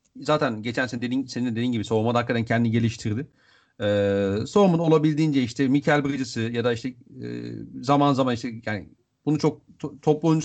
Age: 40-59